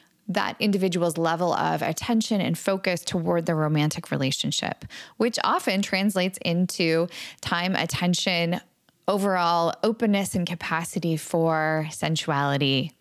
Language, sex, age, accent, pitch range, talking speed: English, female, 10-29, American, 165-200 Hz, 105 wpm